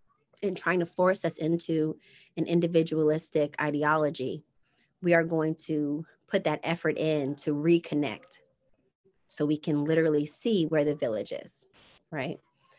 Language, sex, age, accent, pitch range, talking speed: English, female, 30-49, American, 155-195 Hz, 135 wpm